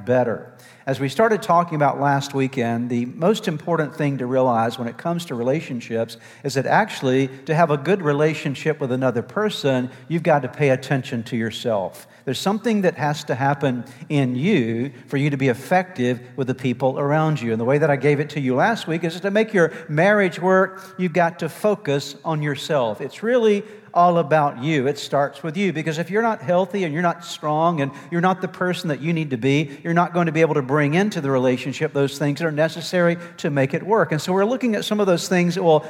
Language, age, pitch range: English, 50-69, 135-170 Hz